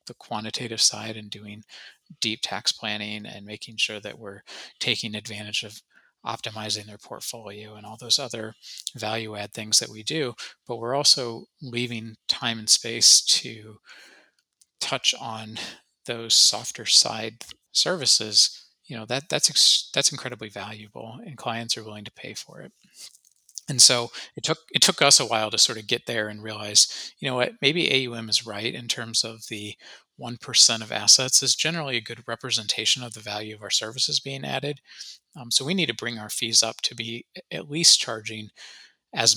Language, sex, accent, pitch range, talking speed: English, male, American, 110-125 Hz, 175 wpm